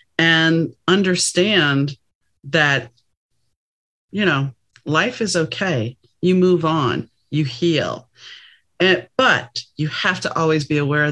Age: 40-59